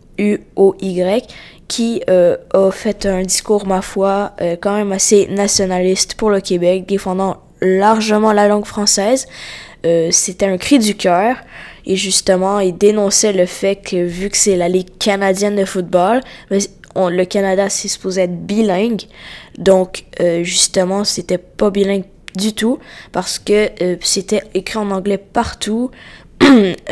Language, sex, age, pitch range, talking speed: French, female, 20-39, 185-210 Hz, 150 wpm